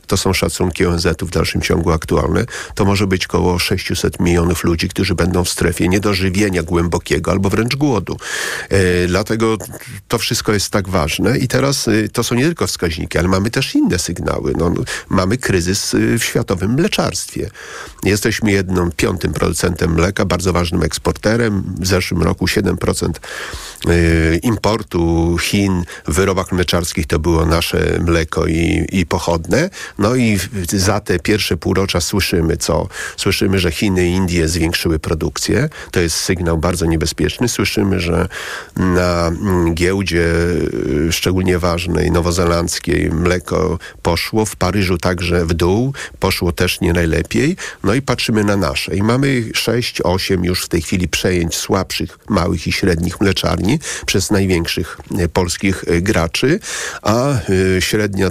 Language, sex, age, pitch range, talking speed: Polish, male, 40-59, 85-100 Hz, 140 wpm